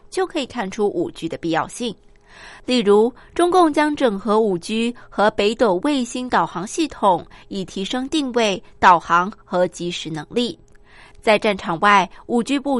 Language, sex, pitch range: Japanese, female, 190-265 Hz